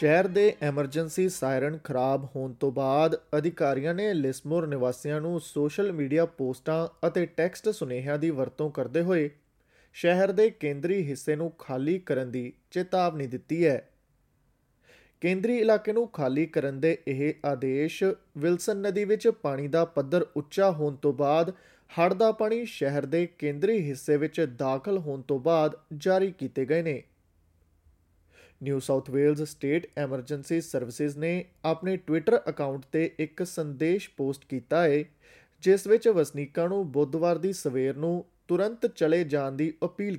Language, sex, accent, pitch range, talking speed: English, male, Indian, 140-185 Hz, 100 wpm